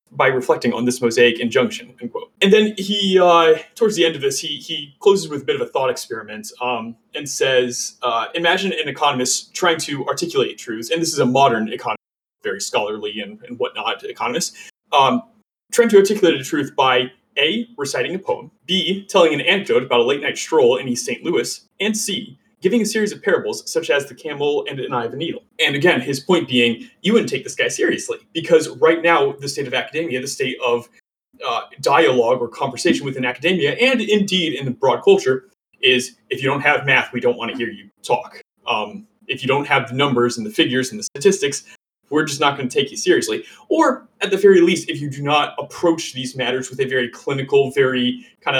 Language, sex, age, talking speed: English, male, 30-49, 215 wpm